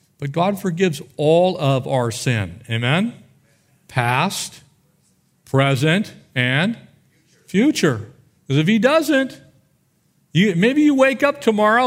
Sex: male